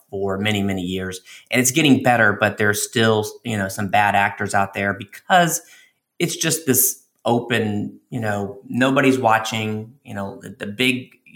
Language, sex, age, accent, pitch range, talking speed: English, male, 30-49, American, 105-120 Hz, 170 wpm